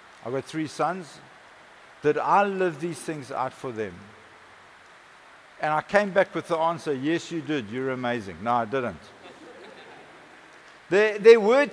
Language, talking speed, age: English, 155 wpm, 60-79